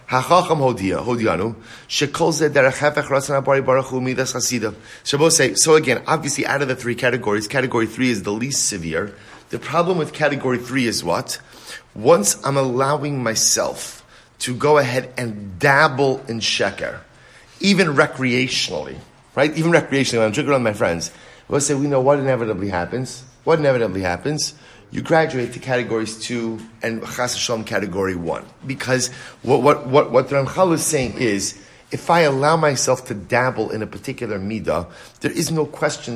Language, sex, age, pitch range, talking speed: English, male, 30-49, 115-145 Hz, 145 wpm